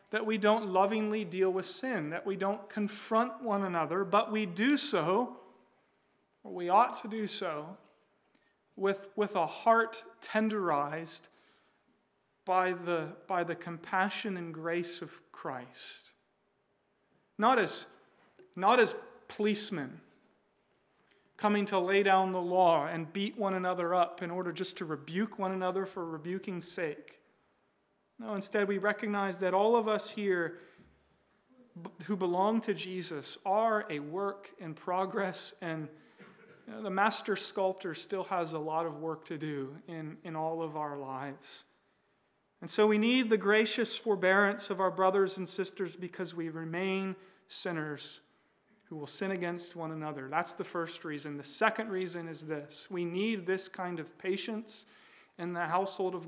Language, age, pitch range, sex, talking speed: English, 40-59, 170-205 Hz, male, 150 wpm